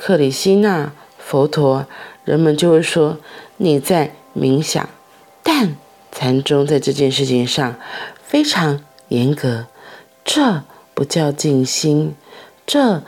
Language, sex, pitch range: Chinese, female, 135-195 Hz